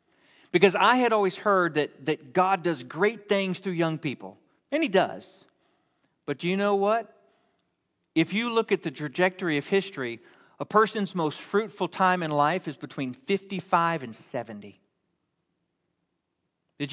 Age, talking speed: 40-59, 150 wpm